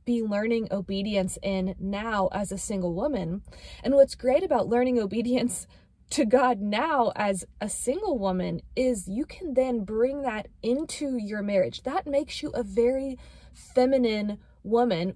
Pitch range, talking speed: 205-270 Hz, 150 wpm